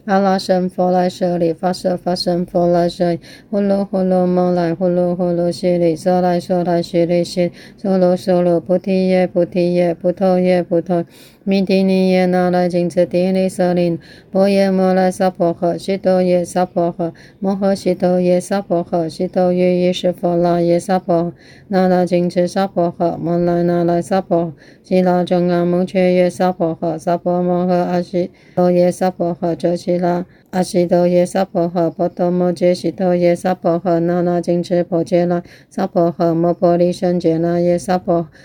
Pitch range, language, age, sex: 170-180 Hz, Chinese, 30-49, female